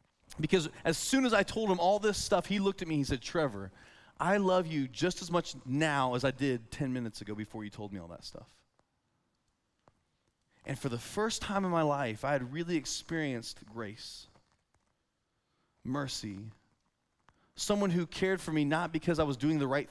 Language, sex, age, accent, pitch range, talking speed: English, male, 20-39, American, 135-210 Hz, 190 wpm